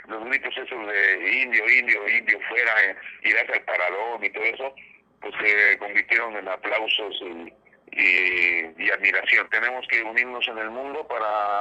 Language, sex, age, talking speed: Spanish, male, 40-59, 170 wpm